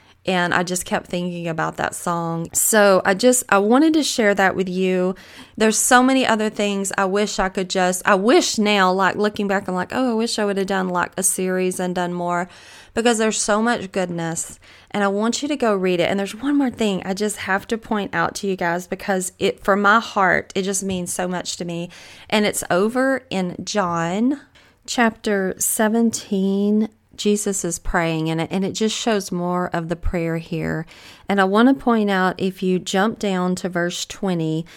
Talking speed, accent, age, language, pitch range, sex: 205 wpm, American, 30-49, English, 175-205 Hz, female